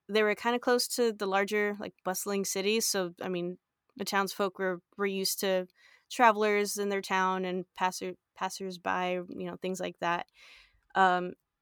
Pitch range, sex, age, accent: 185-225 Hz, female, 20-39, American